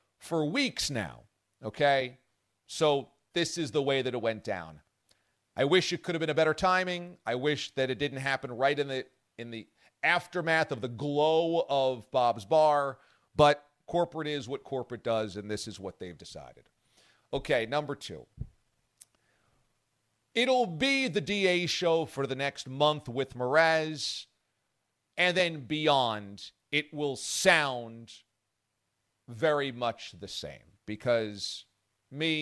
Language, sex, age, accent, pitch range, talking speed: English, male, 40-59, American, 115-155 Hz, 145 wpm